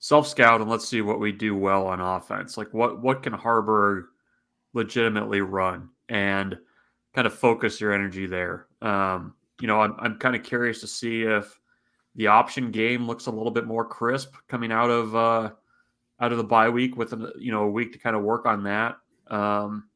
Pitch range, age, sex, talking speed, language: 105-120 Hz, 30-49, male, 200 wpm, English